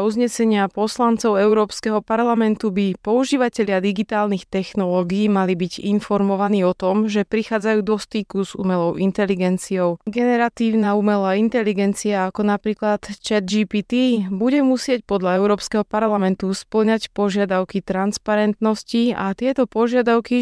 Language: Slovak